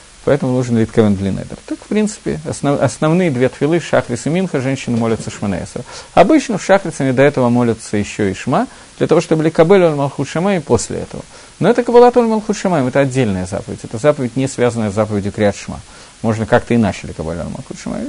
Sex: male